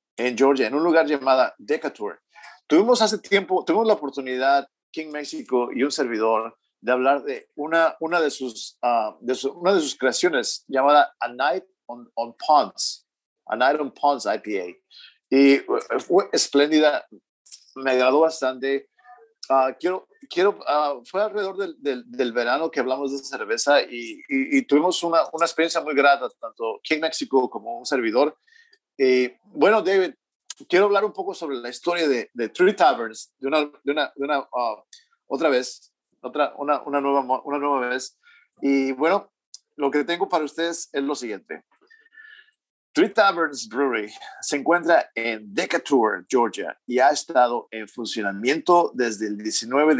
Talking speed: 160 wpm